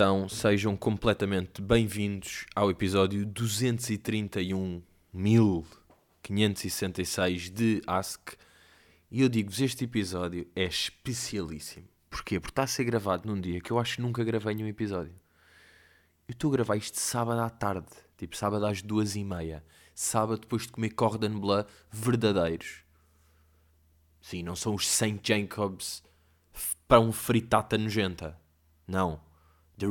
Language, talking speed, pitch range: Portuguese, 130 wpm, 90-120 Hz